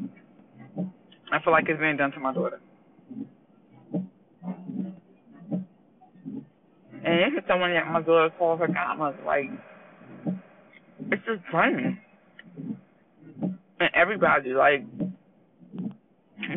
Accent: American